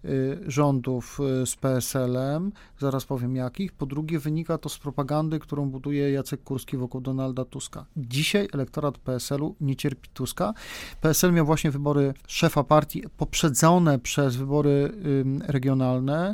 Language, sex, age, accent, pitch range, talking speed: Polish, male, 40-59, native, 135-155 Hz, 130 wpm